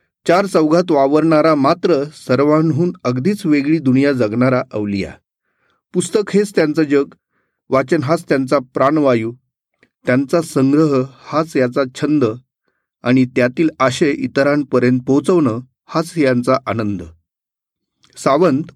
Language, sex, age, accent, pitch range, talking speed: Marathi, male, 40-59, native, 125-165 Hz, 100 wpm